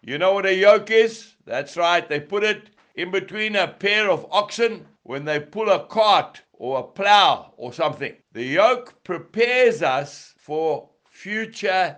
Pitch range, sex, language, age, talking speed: 180-225 Hz, male, English, 60-79, 165 wpm